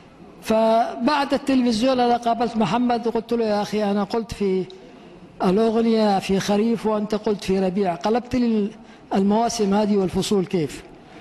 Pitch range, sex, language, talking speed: 205-245 Hz, female, Arabic, 130 wpm